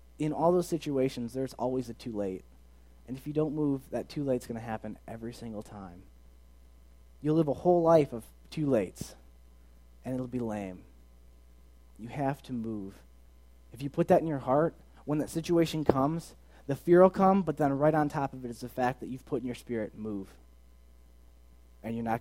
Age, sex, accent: 20-39, male, American